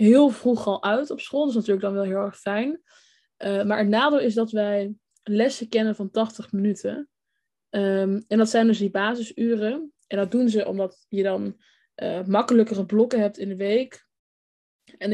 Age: 20-39